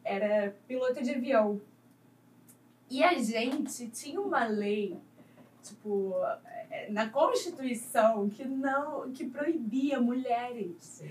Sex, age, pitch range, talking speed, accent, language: female, 10-29, 195-260 Hz, 95 wpm, Brazilian, Portuguese